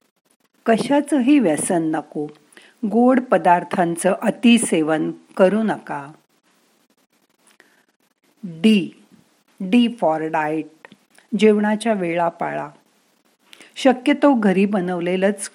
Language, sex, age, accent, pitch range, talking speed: Marathi, female, 50-69, native, 170-240 Hz, 65 wpm